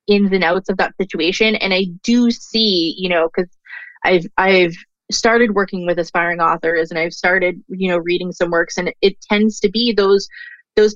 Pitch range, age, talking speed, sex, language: 180-215 Hz, 20-39, 195 wpm, female, English